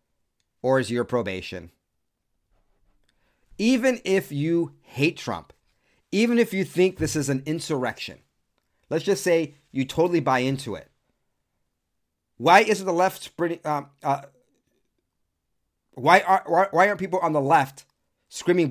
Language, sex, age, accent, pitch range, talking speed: English, male, 40-59, American, 120-165 Hz, 140 wpm